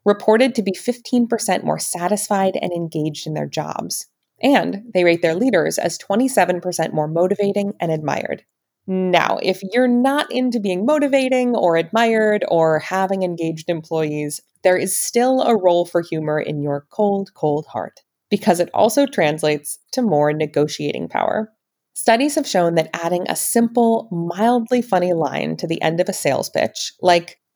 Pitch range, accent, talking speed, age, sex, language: 165-225 Hz, American, 160 wpm, 20-39, female, English